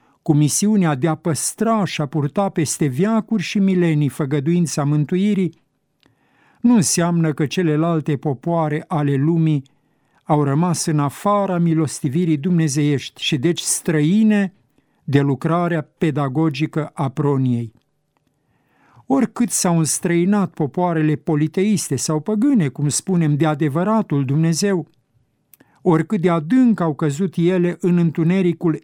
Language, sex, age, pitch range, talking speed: Romanian, male, 50-69, 150-180 Hz, 115 wpm